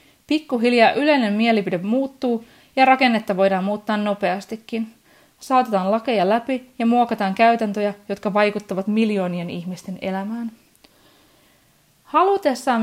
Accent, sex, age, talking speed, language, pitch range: native, female, 30-49, 100 wpm, Finnish, 195-255 Hz